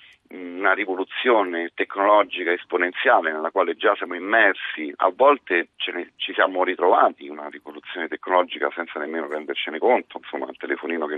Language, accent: Italian, native